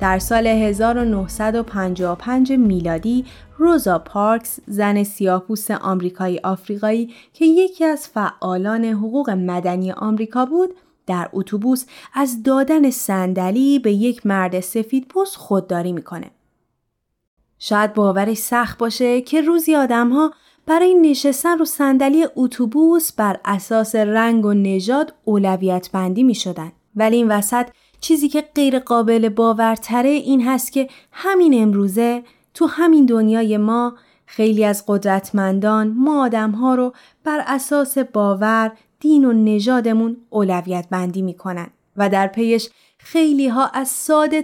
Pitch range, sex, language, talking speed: 200-275 Hz, female, Persian, 120 wpm